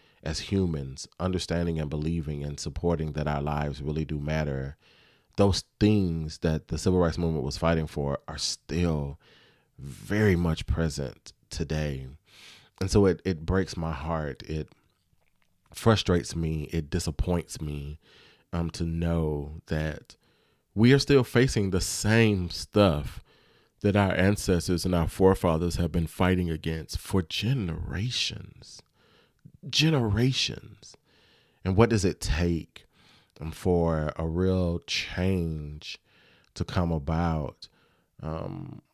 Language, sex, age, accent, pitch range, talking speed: English, male, 30-49, American, 80-95 Hz, 125 wpm